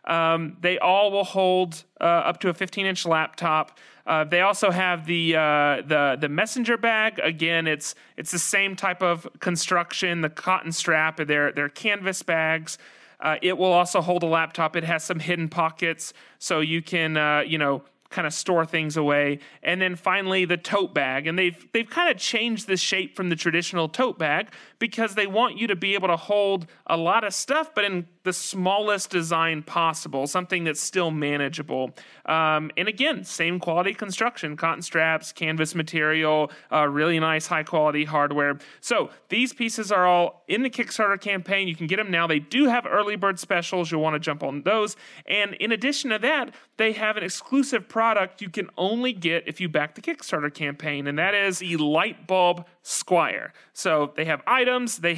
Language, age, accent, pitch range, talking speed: English, 30-49, American, 155-200 Hz, 195 wpm